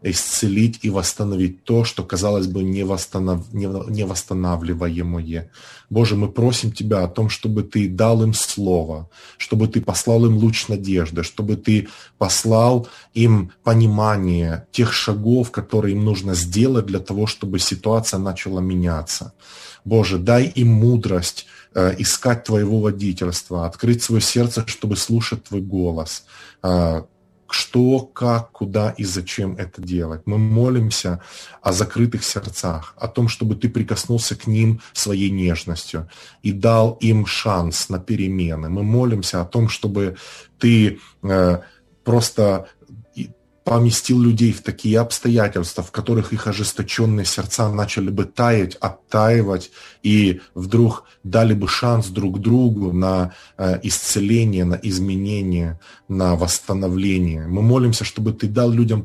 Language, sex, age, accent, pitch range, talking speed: Ukrainian, male, 20-39, native, 95-115 Hz, 130 wpm